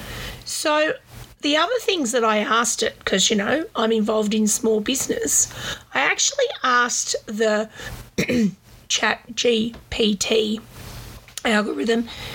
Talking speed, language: 105 wpm, English